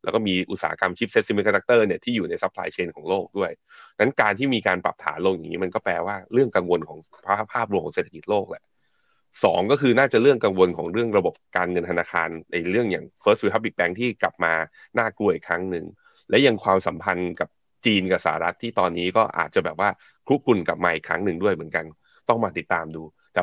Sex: male